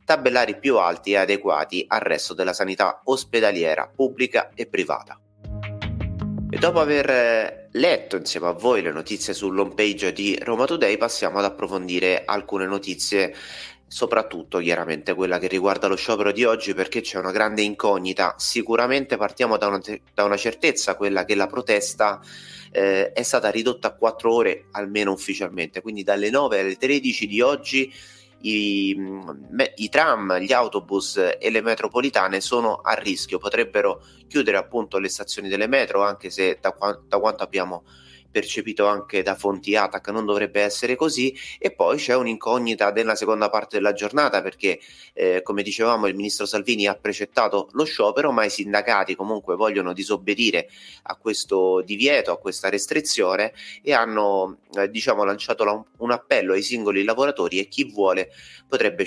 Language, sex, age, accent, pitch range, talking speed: Italian, male, 30-49, native, 95-120 Hz, 155 wpm